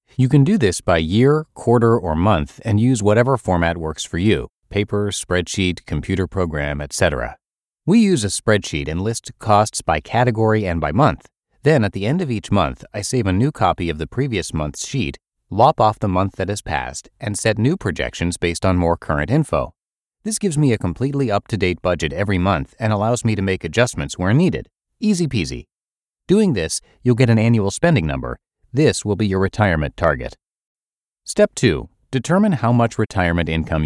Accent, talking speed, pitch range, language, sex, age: American, 190 wpm, 85-125 Hz, English, male, 30-49